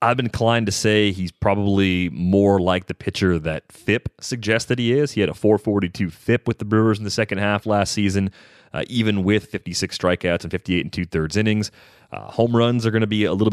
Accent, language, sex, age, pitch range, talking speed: American, English, male, 30-49, 90-110 Hz, 215 wpm